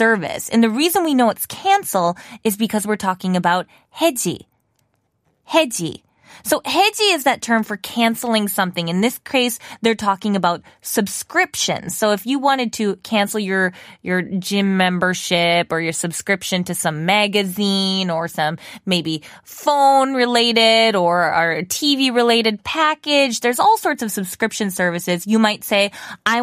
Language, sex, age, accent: Korean, female, 20-39, American